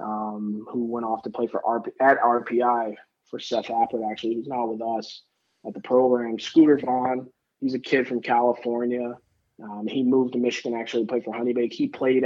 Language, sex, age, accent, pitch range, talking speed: English, male, 20-39, American, 120-140 Hz, 195 wpm